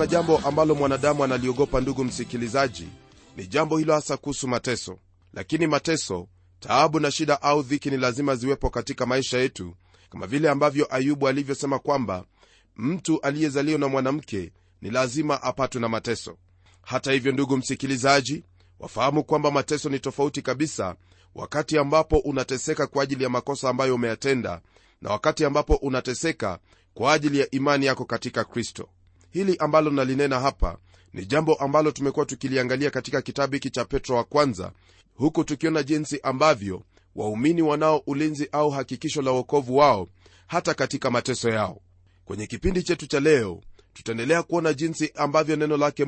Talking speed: 145 wpm